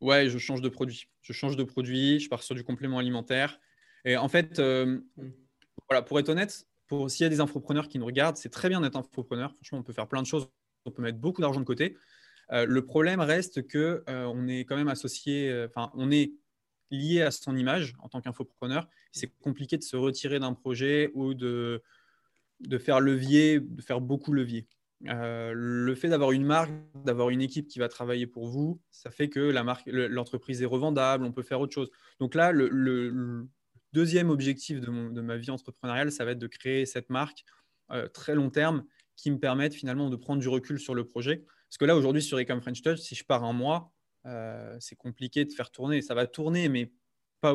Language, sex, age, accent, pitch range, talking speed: French, male, 20-39, French, 125-145 Hz, 220 wpm